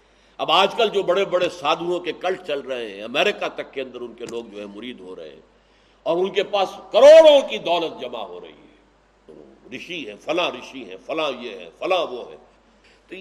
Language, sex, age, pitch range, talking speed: Urdu, male, 60-79, 180-300 Hz, 210 wpm